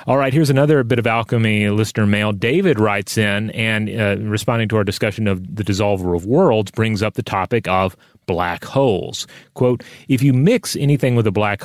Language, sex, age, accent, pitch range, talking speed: English, male, 30-49, American, 100-125 Hz, 195 wpm